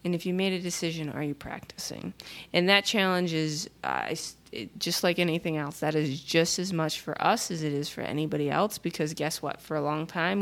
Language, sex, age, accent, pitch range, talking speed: English, female, 20-39, American, 150-185 Hz, 220 wpm